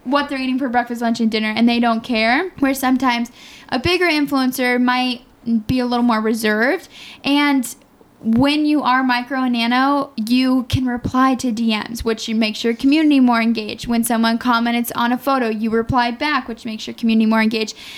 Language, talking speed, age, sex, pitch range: English, 185 wpm, 10-29, female, 230-270 Hz